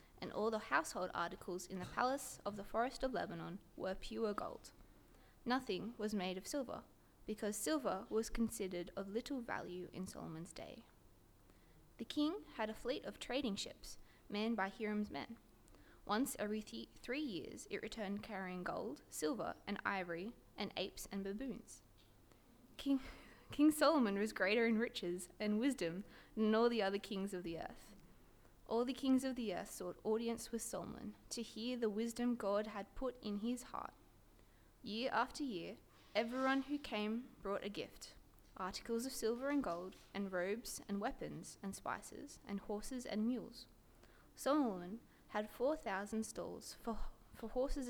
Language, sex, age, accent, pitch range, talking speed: English, female, 20-39, Australian, 195-250 Hz, 160 wpm